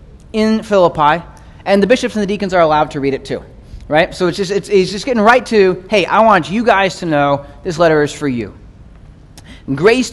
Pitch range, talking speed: 145-200 Hz, 220 wpm